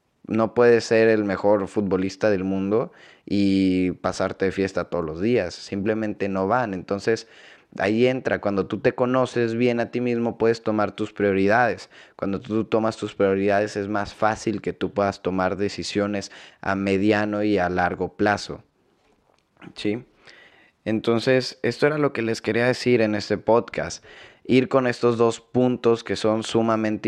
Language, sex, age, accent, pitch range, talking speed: Spanish, male, 20-39, Mexican, 105-130 Hz, 160 wpm